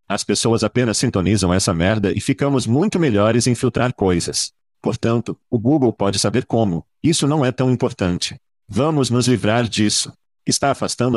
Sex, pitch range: male, 100-130 Hz